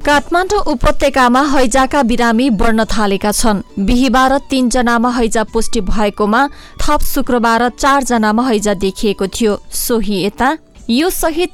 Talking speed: 125 wpm